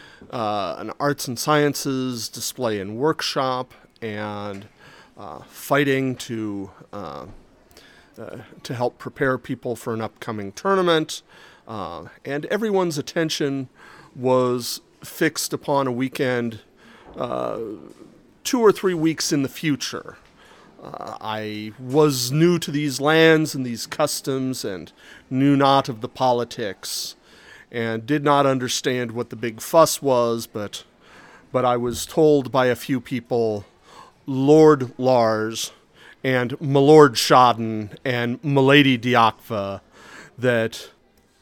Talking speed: 120 wpm